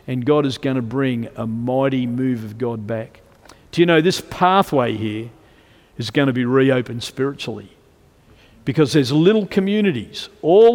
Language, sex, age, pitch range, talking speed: English, male, 50-69, 145-220 Hz, 160 wpm